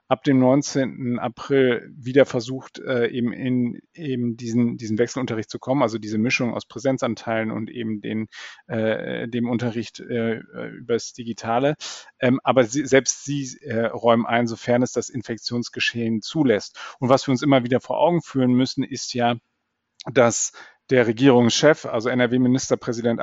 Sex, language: male, German